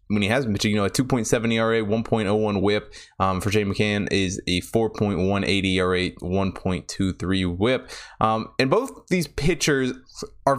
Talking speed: 140 wpm